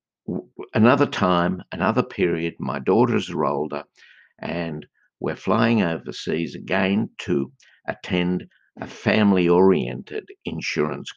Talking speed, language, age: 95 wpm, English, 60-79